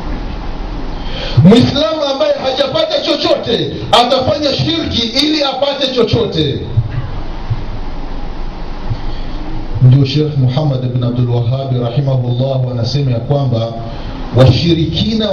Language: Swahili